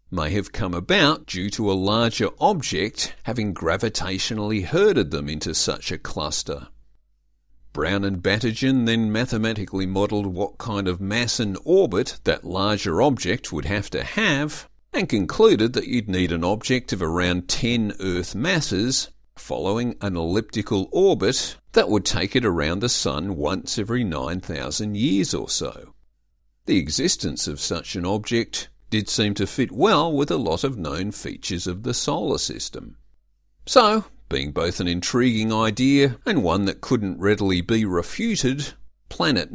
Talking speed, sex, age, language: 150 wpm, male, 50-69, English